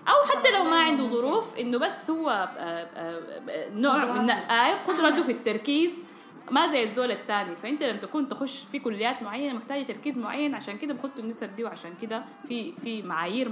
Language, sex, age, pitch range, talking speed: Arabic, female, 10-29, 185-275 Hz, 170 wpm